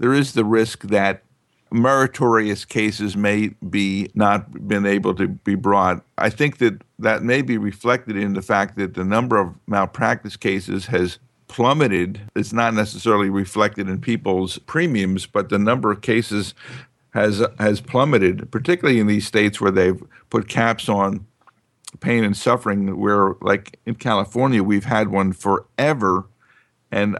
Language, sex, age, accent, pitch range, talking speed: English, male, 50-69, American, 100-115 Hz, 150 wpm